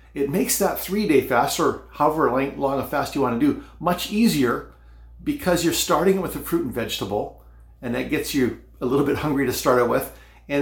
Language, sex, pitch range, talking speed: English, male, 120-175 Hz, 210 wpm